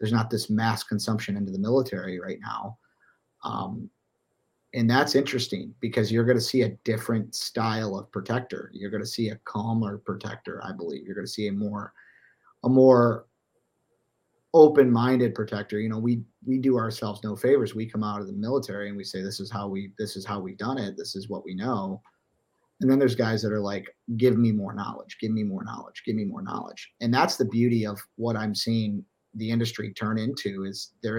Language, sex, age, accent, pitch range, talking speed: English, male, 30-49, American, 105-120 Hz, 200 wpm